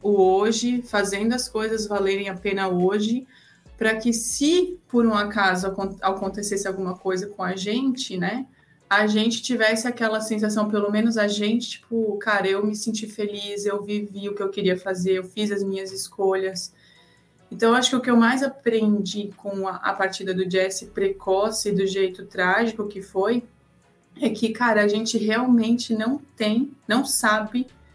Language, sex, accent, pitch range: Portuguese, female, Brazilian, 195-225 Hz